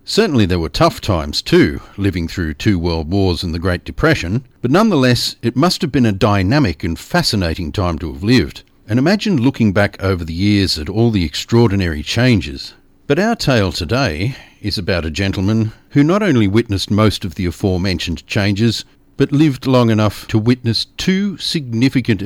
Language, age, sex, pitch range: English, 50-69, male, 90-120 Hz